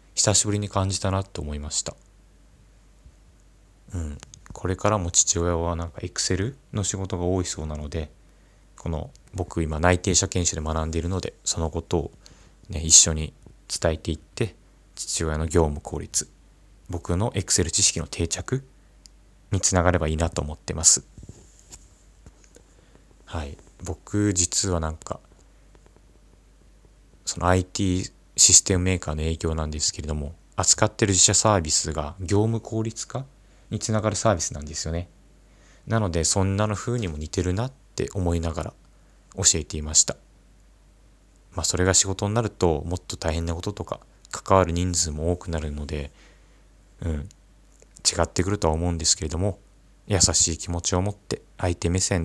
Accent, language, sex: native, Japanese, male